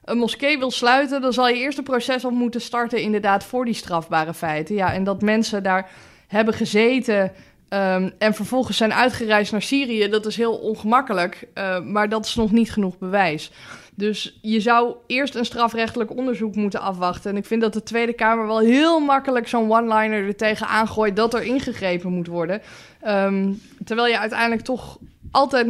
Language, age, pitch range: Dutch, 20-39, 195-230 Hz